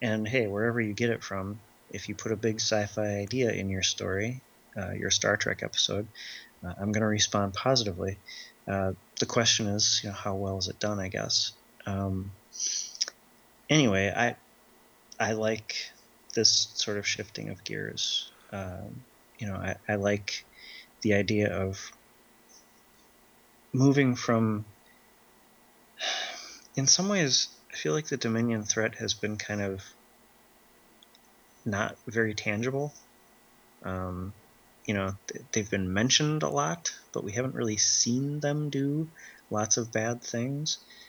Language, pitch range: English, 100-120 Hz